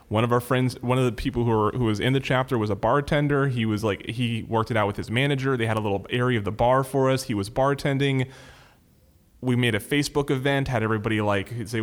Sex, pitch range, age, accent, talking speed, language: male, 105-130 Hz, 20-39, American, 255 wpm, English